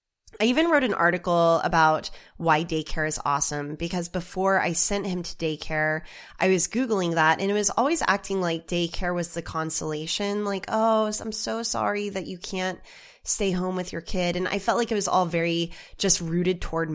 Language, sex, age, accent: English, female, 20-39, American